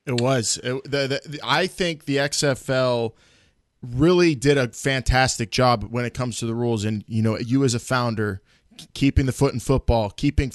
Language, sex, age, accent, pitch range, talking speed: English, male, 20-39, American, 115-145 Hz, 195 wpm